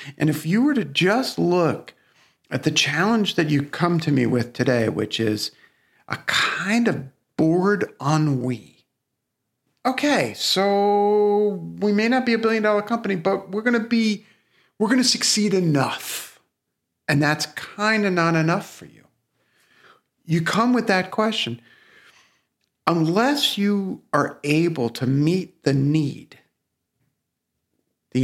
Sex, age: male, 50-69